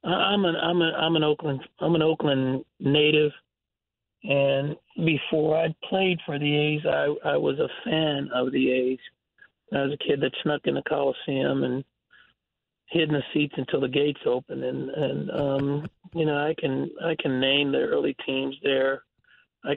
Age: 40-59